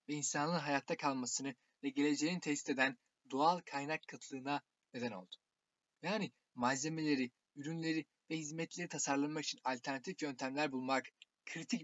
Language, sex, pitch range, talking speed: Turkish, male, 135-160 Hz, 120 wpm